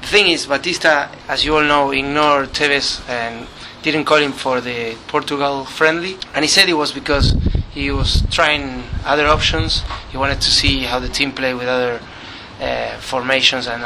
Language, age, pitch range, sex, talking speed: English, 30-49, 130-150 Hz, male, 175 wpm